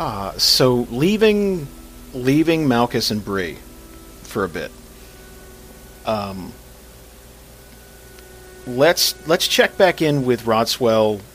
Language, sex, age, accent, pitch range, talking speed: English, male, 40-59, American, 100-140 Hz, 95 wpm